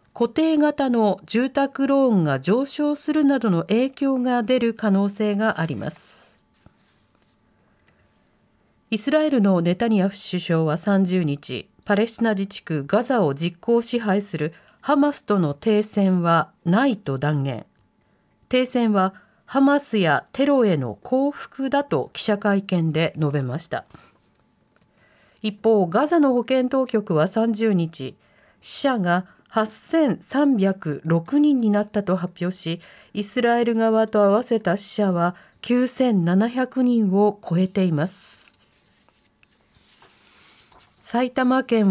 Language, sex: Japanese, female